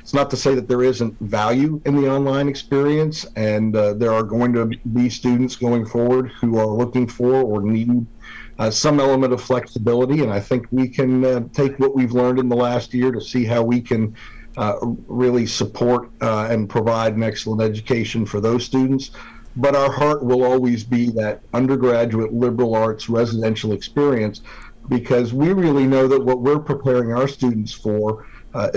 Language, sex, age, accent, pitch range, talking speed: English, male, 50-69, American, 115-130 Hz, 185 wpm